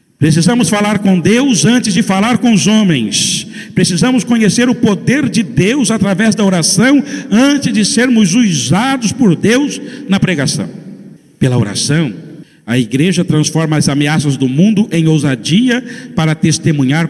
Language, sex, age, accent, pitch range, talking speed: Portuguese, male, 50-69, Brazilian, 175-235 Hz, 140 wpm